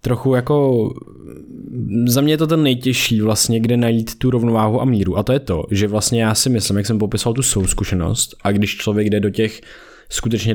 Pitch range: 105-130 Hz